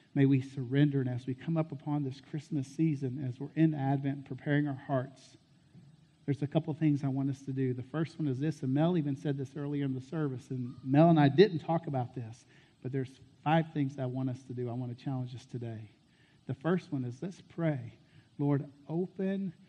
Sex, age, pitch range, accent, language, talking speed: male, 50-69, 130-155 Hz, American, English, 225 wpm